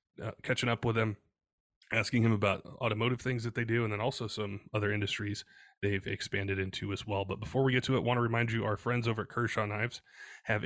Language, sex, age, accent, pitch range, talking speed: English, male, 20-39, American, 100-115 Hz, 235 wpm